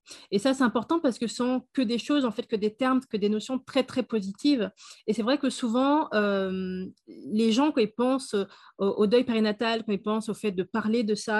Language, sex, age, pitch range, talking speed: French, female, 30-49, 200-245 Hz, 245 wpm